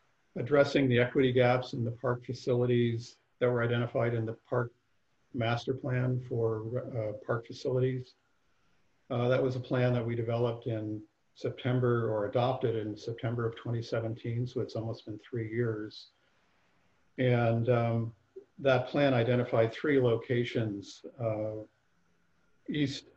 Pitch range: 115-130 Hz